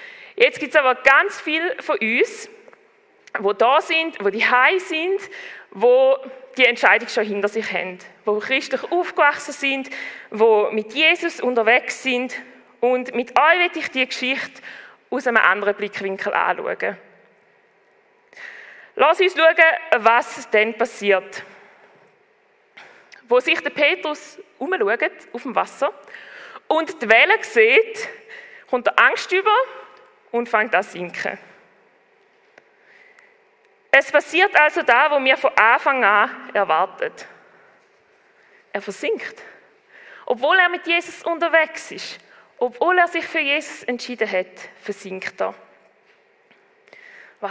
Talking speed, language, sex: 120 wpm, English, female